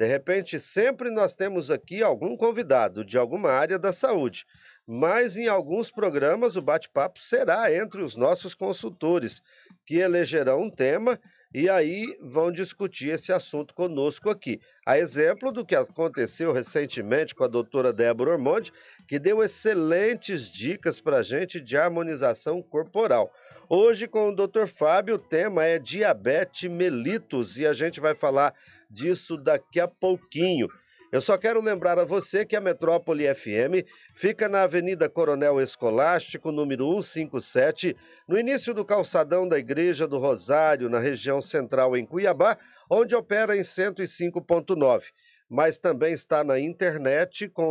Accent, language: Brazilian, Portuguese